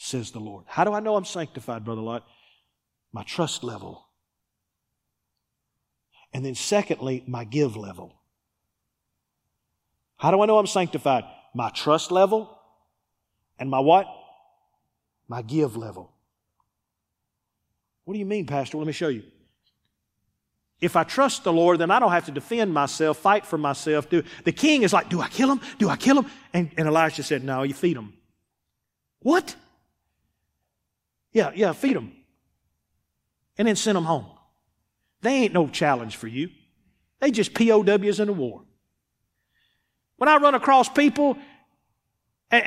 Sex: male